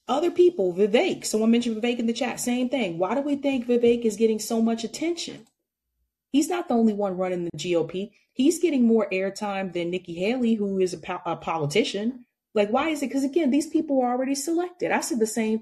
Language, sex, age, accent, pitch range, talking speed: English, female, 30-49, American, 175-245 Hz, 220 wpm